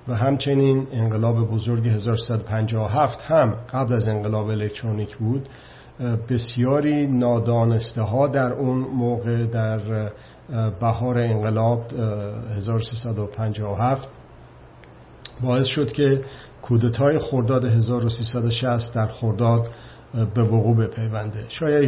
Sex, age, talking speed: male, 50-69, 90 wpm